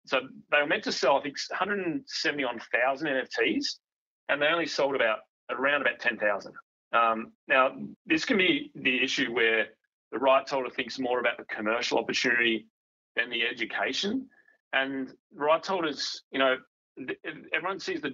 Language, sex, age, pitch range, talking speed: English, male, 30-49, 115-140 Hz, 155 wpm